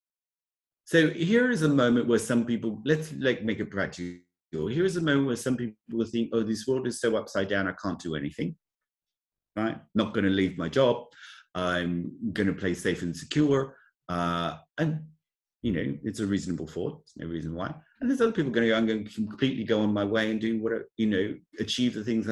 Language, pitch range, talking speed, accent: English, 100-140 Hz, 205 wpm, British